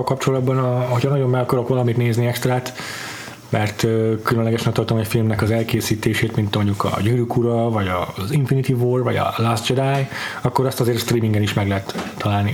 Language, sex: Hungarian, male